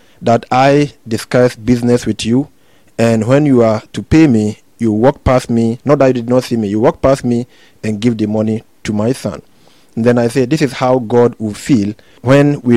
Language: English